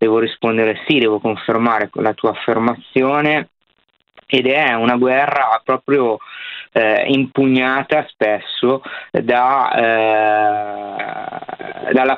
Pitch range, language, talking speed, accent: 105-130 Hz, Italian, 90 wpm, native